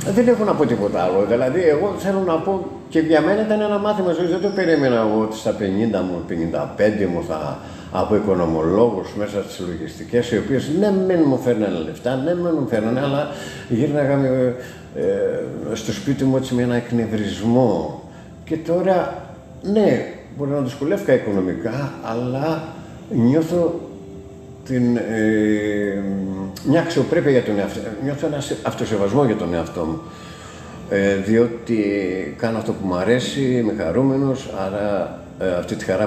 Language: Greek